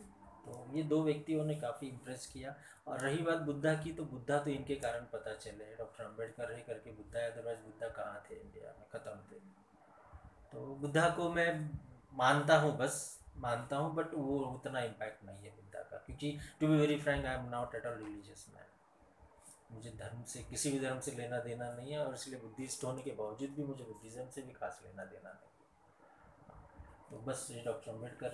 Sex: male